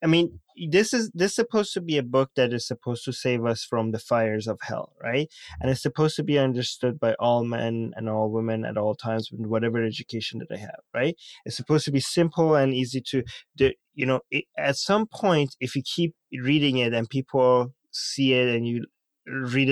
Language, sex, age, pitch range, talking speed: English, male, 20-39, 120-150 Hz, 215 wpm